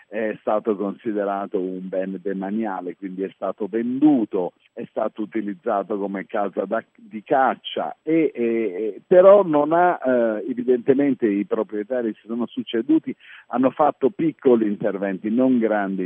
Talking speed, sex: 130 wpm, male